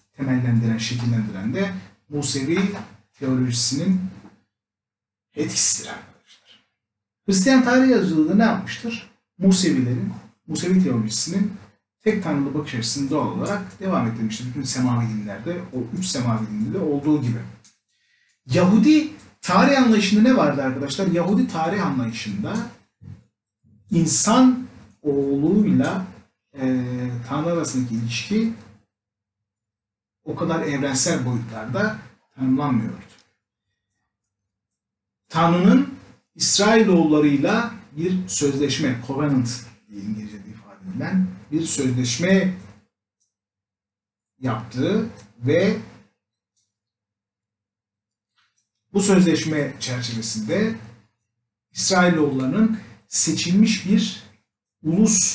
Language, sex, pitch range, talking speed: Turkish, male, 110-175 Hz, 75 wpm